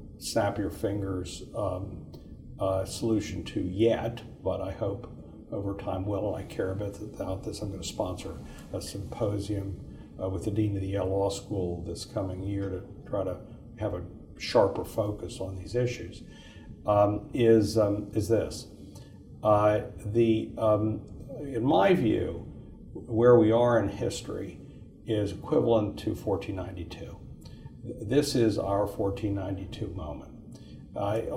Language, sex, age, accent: English, male, 60-79, American